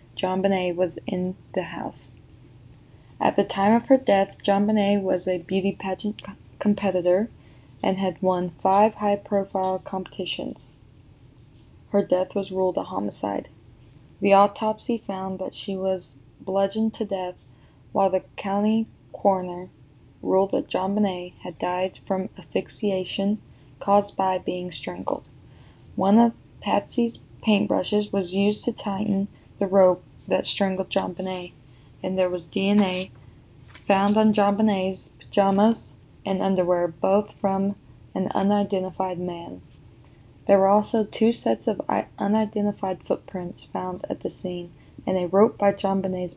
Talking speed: 135 wpm